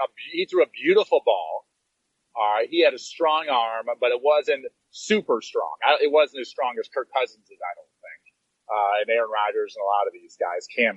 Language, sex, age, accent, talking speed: English, male, 30-49, American, 220 wpm